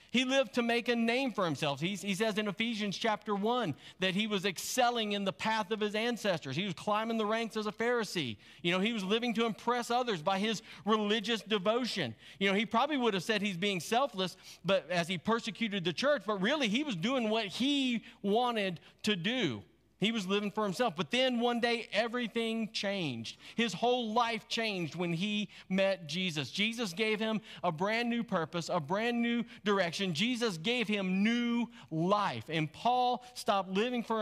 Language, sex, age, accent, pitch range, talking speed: English, male, 40-59, American, 170-225 Hz, 195 wpm